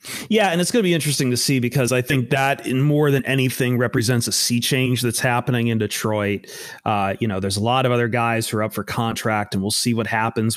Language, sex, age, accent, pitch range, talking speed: English, male, 30-49, American, 105-125 Hz, 250 wpm